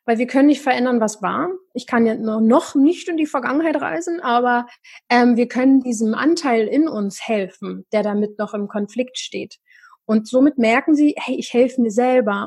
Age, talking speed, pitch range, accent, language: 30-49, 195 wpm, 225-265 Hz, German, German